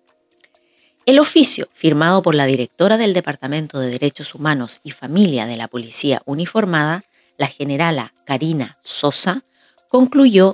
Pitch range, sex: 135-185 Hz, female